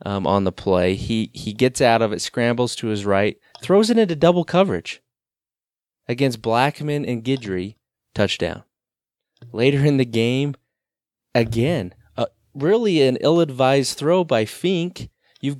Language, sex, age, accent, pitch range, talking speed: English, male, 30-49, American, 100-140 Hz, 145 wpm